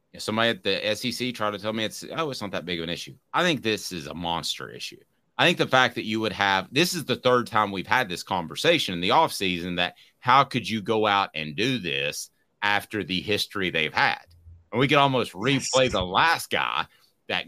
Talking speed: 235 wpm